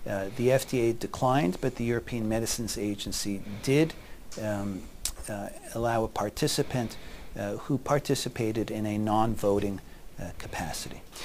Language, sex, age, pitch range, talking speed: English, male, 50-69, 115-145 Hz, 115 wpm